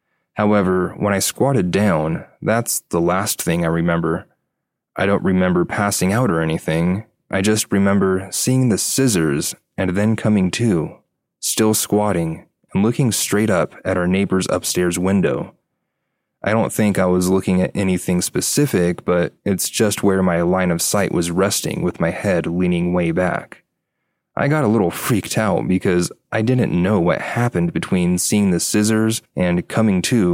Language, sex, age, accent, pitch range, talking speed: English, male, 20-39, American, 90-105 Hz, 165 wpm